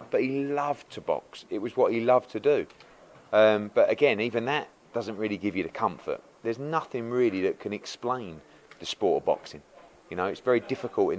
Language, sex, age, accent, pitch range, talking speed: English, male, 30-49, British, 105-140 Hz, 210 wpm